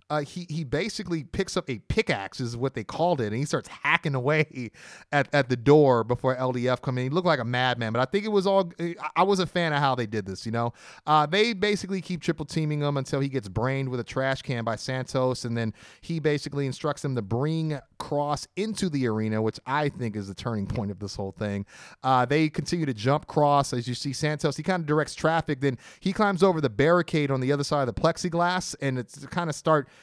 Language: English